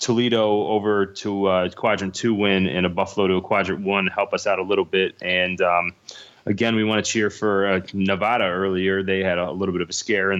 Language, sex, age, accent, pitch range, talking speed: English, male, 20-39, American, 90-105 Hz, 230 wpm